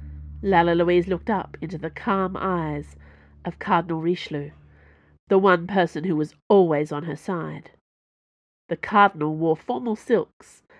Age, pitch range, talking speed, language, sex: 40-59, 155-215 Hz, 140 wpm, English, female